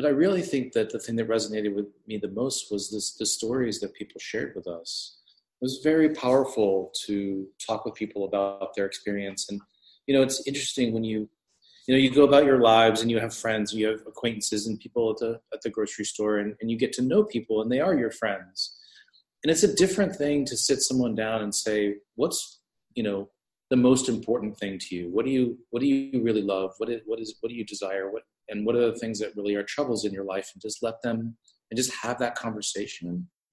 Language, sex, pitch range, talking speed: English, male, 105-130 Hz, 235 wpm